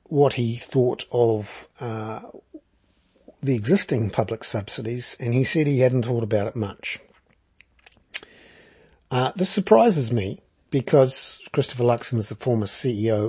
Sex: male